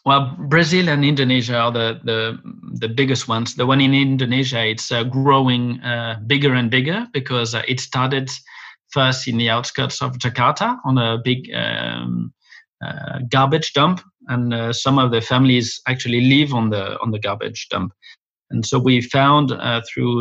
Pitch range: 115-130 Hz